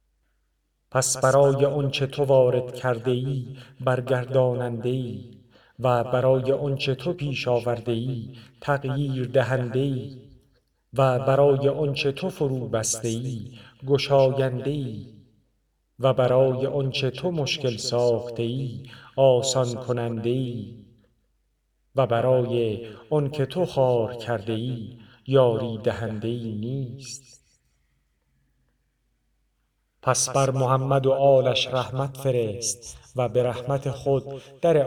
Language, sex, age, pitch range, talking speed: Persian, male, 50-69, 115-135 Hz, 100 wpm